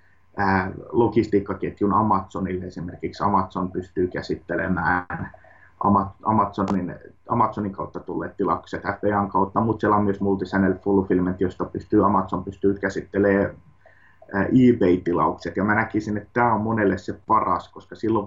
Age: 30-49